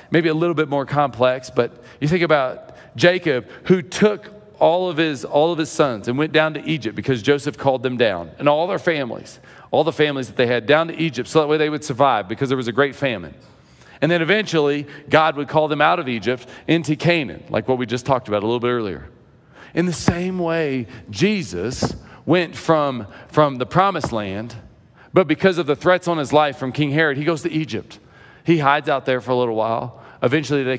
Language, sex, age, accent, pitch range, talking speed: English, male, 40-59, American, 120-150 Hz, 220 wpm